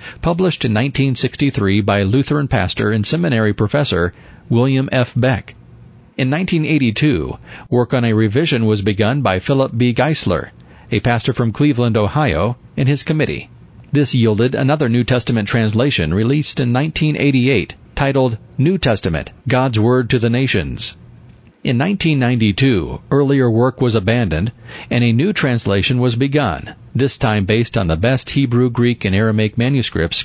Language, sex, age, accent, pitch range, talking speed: English, male, 40-59, American, 110-135 Hz, 145 wpm